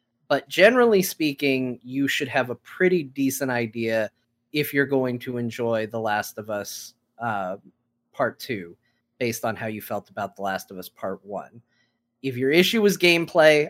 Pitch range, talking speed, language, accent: 120-150 Hz, 170 wpm, English, American